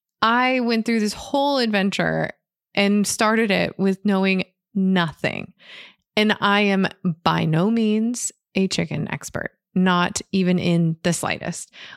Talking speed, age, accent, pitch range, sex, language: 130 wpm, 20-39, American, 185-235 Hz, female, English